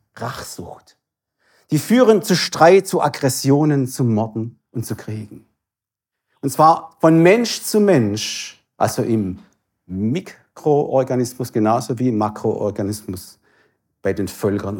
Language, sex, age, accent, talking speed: German, male, 50-69, German, 115 wpm